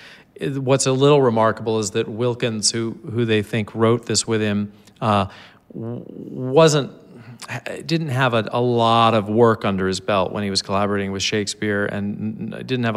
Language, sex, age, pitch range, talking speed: English, male, 40-59, 100-115 Hz, 170 wpm